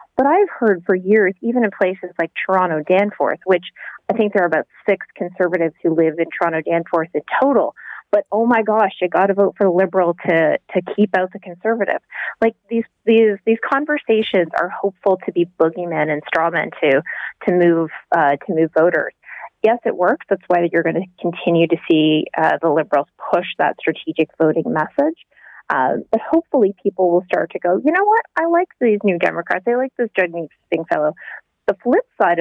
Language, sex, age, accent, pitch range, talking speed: English, female, 30-49, American, 165-210 Hz, 190 wpm